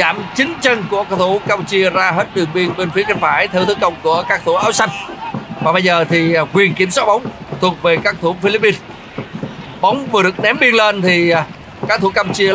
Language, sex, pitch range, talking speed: Vietnamese, male, 185-225 Hz, 215 wpm